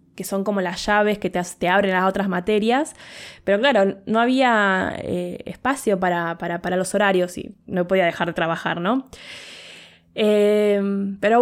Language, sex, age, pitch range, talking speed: Spanish, female, 20-39, 185-235 Hz, 170 wpm